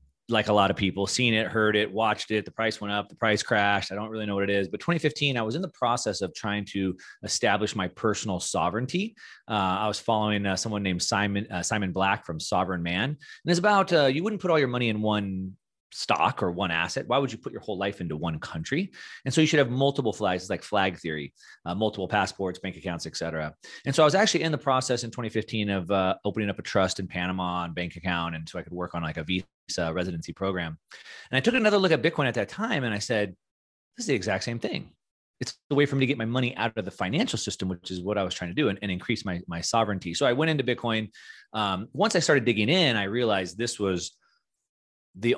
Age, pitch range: 30-49, 95-120 Hz